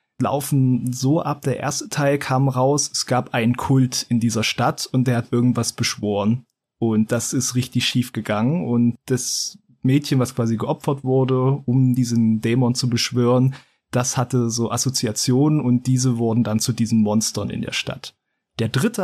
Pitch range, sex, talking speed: 120-140 Hz, male, 170 wpm